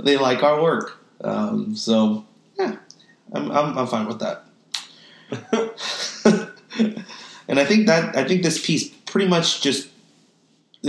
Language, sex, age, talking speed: English, male, 30-49, 130 wpm